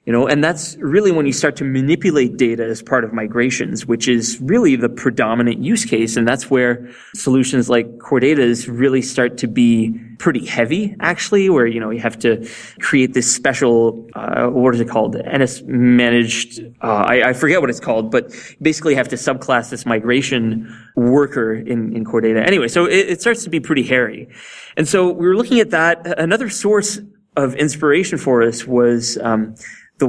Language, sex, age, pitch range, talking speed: English, male, 20-39, 115-155 Hz, 195 wpm